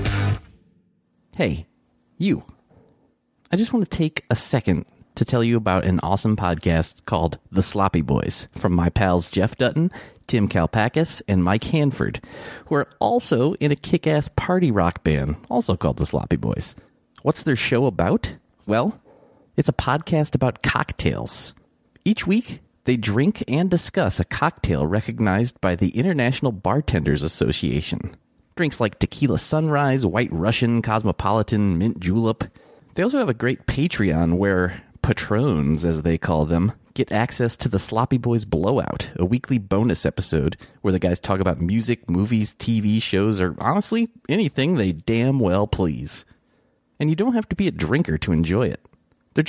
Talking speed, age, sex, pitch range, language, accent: 155 wpm, 30-49, male, 95-140 Hz, English, American